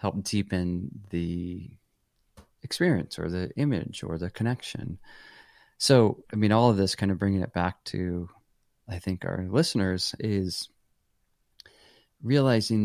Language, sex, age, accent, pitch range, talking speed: English, male, 30-49, American, 95-120 Hz, 130 wpm